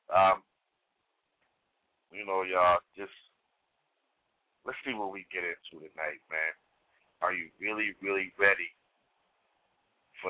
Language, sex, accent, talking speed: English, male, American, 110 wpm